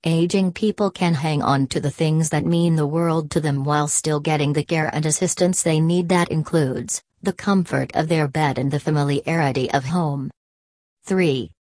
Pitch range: 145-175 Hz